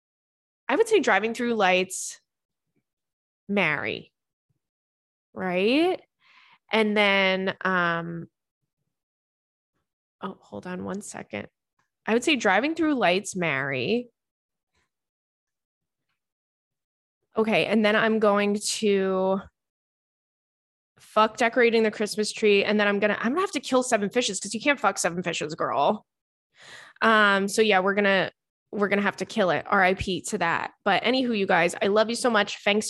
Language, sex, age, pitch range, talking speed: English, female, 20-39, 185-220 Hz, 145 wpm